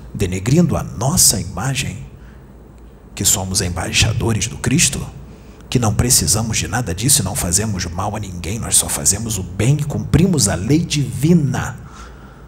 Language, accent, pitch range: Portuguese, Brazilian, 75-120 Hz